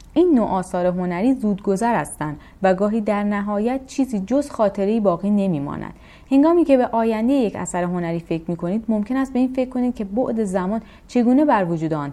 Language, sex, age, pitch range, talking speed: Persian, female, 30-49, 175-250 Hz, 185 wpm